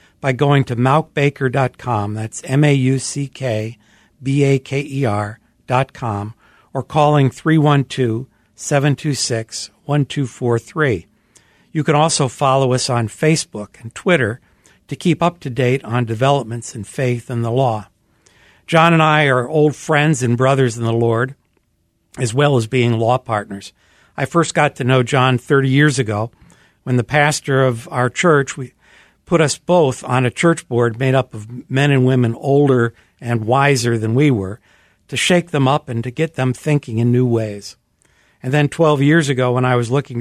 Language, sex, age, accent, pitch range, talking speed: English, male, 60-79, American, 115-145 Hz, 155 wpm